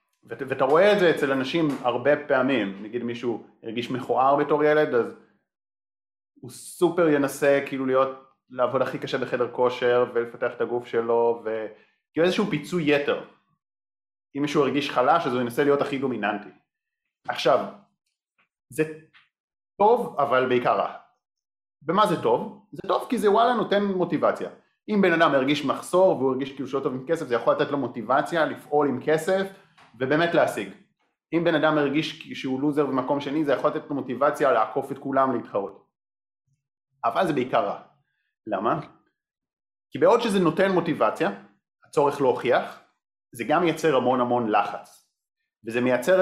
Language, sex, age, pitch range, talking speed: Hebrew, male, 30-49, 125-165 Hz, 155 wpm